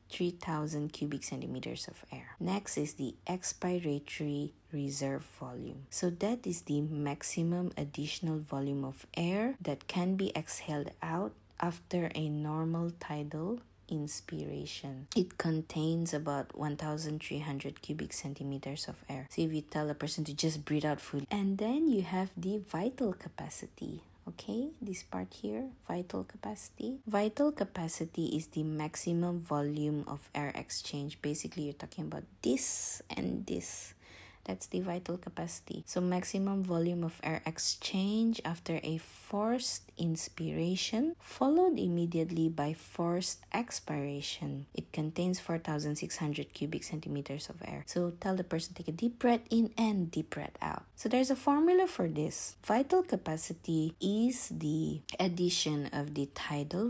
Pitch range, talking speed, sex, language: 145-185 Hz, 140 wpm, female, English